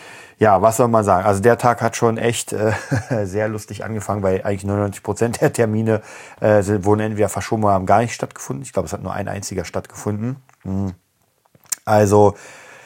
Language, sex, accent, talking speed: German, male, German, 180 wpm